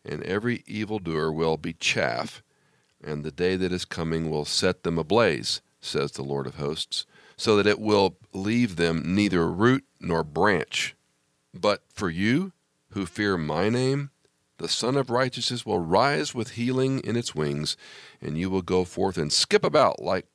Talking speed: 170 wpm